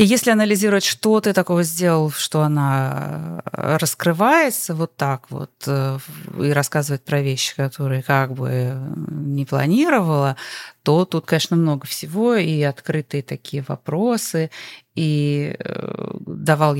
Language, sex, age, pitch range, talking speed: Russian, female, 30-49, 140-170 Hz, 120 wpm